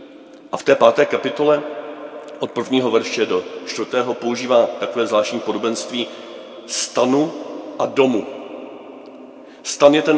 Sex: male